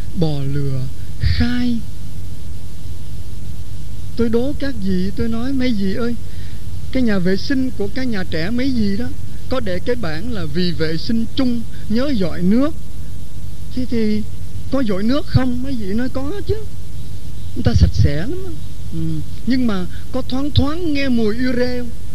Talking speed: 165 wpm